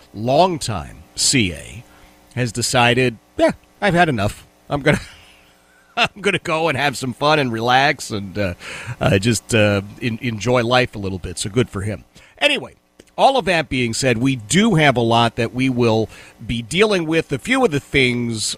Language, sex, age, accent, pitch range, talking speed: English, male, 40-59, American, 110-150 Hz, 185 wpm